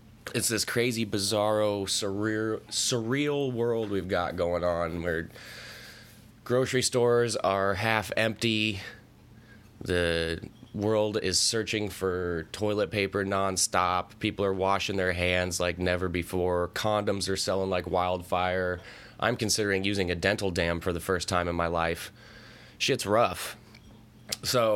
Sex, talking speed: male, 130 wpm